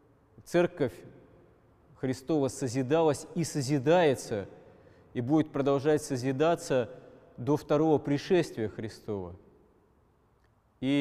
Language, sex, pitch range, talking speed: Russian, male, 120-155 Hz, 75 wpm